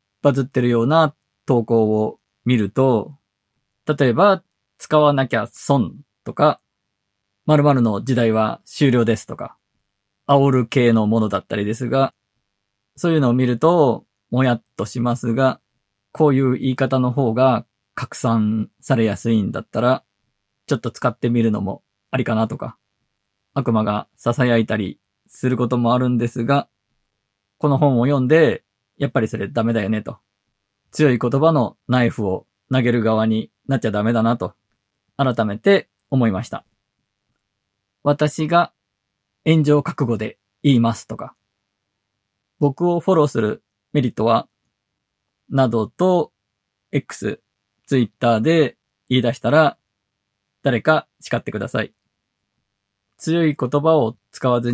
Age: 20-39